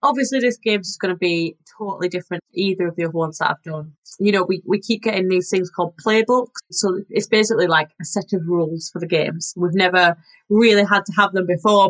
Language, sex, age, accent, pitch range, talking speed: English, female, 20-39, British, 170-210 Hz, 230 wpm